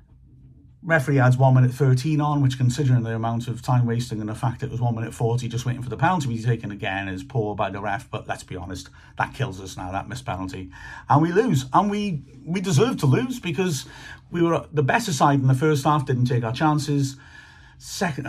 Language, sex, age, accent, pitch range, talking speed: English, male, 40-59, British, 110-140 Hz, 230 wpm